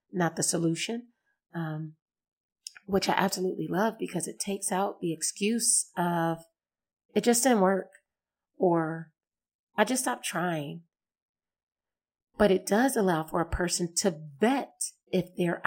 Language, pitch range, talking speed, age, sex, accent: English, 180-215 Hz, 135 wpm, 40-59, female, American